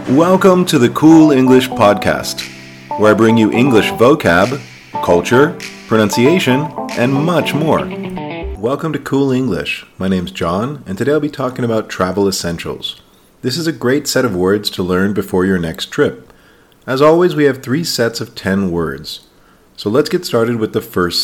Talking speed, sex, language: 170 wpm, male, English